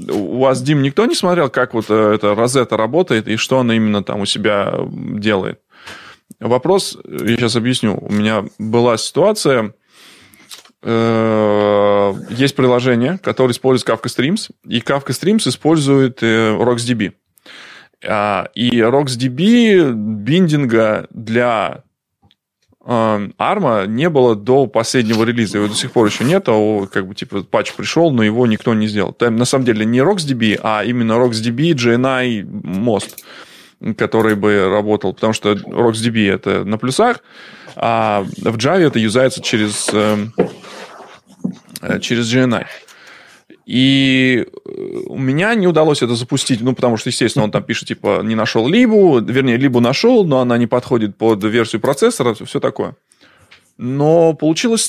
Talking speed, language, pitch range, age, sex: 140 wpm, Russian, 110-140 Hz, 20-39, male